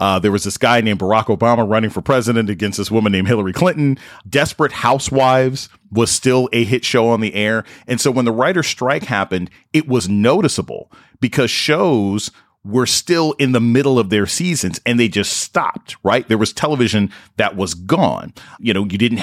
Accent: American